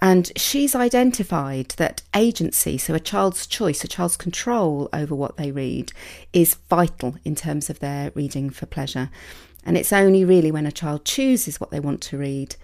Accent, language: British, English